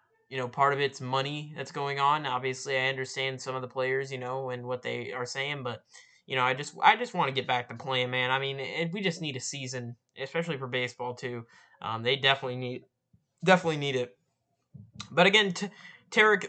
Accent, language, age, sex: American, English, 20-39, male